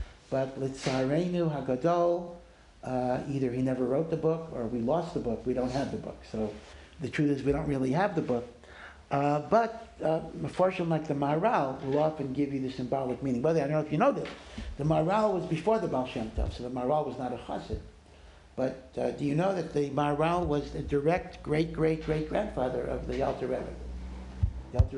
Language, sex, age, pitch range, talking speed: English, male, 60-79, 125-155 Hz, 205 wpm